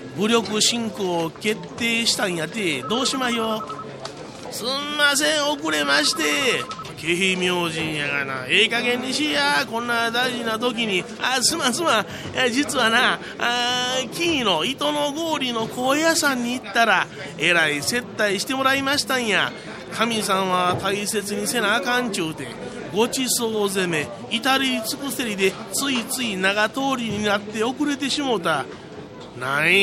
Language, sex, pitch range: Japanese, male, 205-260 Hz